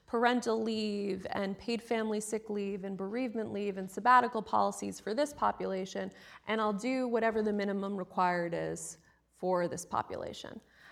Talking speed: 150 wpm